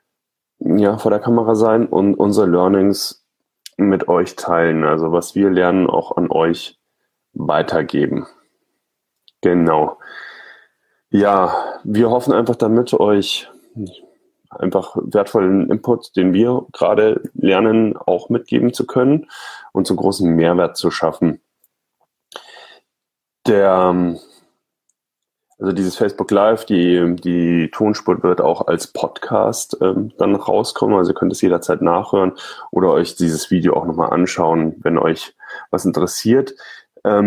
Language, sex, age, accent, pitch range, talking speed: German, male, 10-29, German, 90-115 Hz, 120 wpm